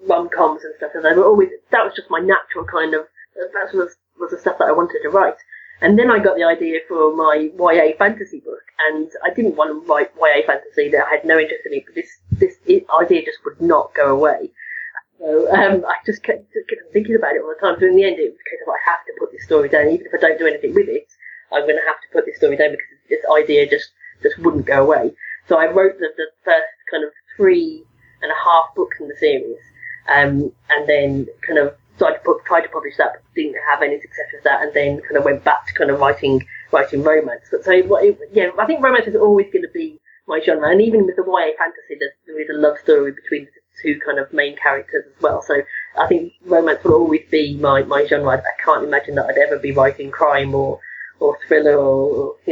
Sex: female